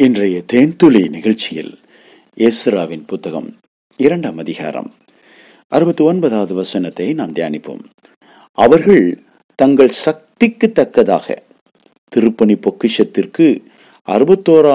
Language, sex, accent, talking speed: English, male, Indian, 70 wpm